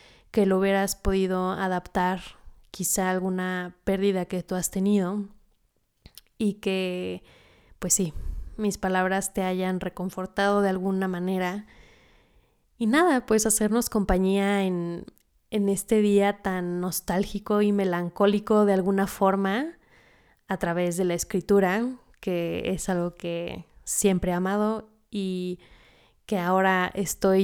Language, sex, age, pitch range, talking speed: Spanish, female, 20-39, 180-205 Hz, 120 wpm